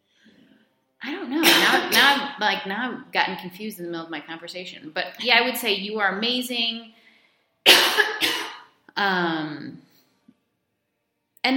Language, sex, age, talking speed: English, female, 30-49, 140 wpm